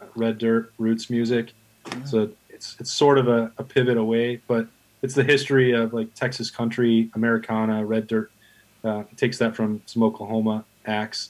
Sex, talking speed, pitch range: male, 165 wpm, 110-125 Hz